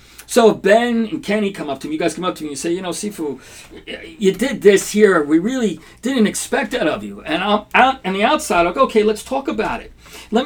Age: 50-69